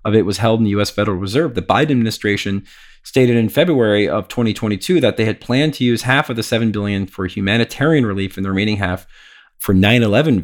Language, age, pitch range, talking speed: English, 40-59, 95-115 Hz, 215 wpm